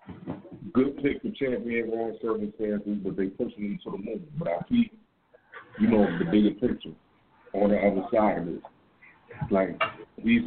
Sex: male